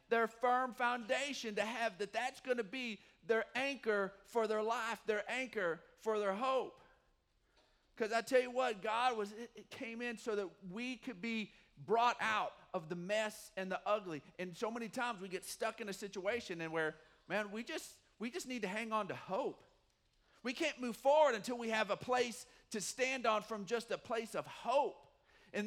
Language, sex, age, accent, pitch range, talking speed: English, male, 40-59, American, 190-230 Hz, 195 wpm